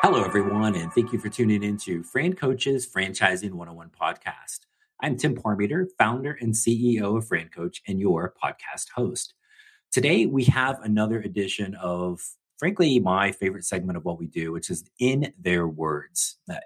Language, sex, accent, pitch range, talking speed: English, male, American, 90-125 Hz, 165 wpm